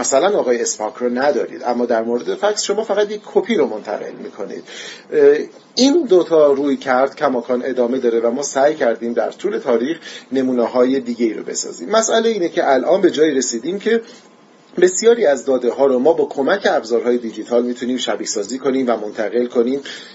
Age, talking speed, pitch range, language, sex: 30-49, 175 wpm, 120-185 Hz, Persian, male